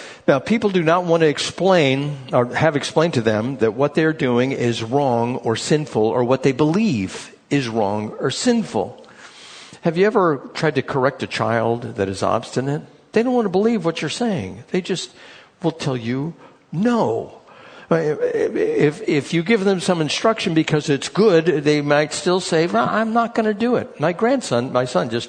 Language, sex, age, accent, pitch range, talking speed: English, male, 60-79, American, 120-165 Hz, 185 wpm